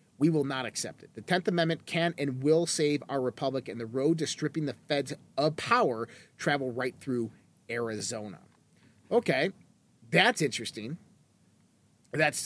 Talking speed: 150 wpm